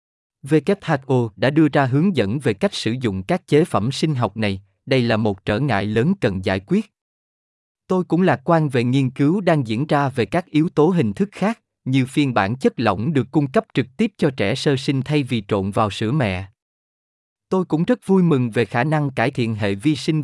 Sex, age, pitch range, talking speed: male, 20-39, 115-165 Hz, 220 wpm